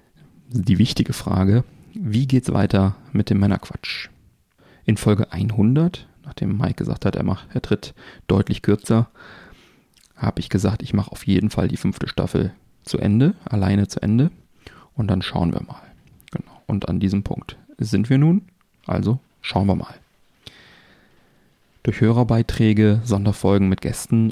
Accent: German